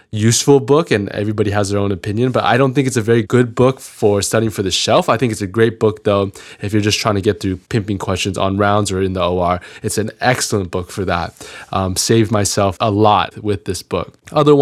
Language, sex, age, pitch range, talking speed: English, male, 20-39, 105-120 Hz, 240 wpm